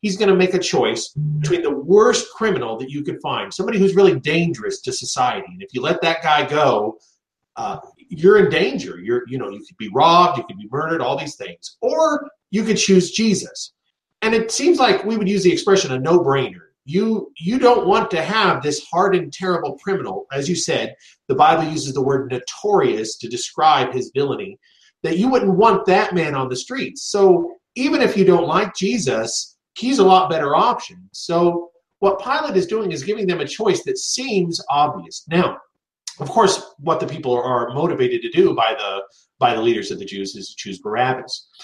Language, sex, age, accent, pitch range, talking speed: English, male, 40-59, American, 160-240 Hz, 205 wpm